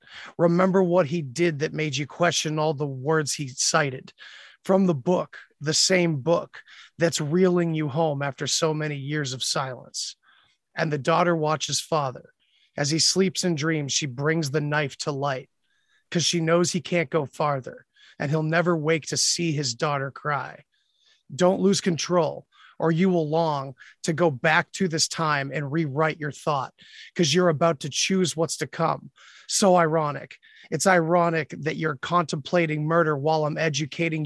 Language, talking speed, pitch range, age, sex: English, 170 wpm, 150-175 Hz, 30-49, male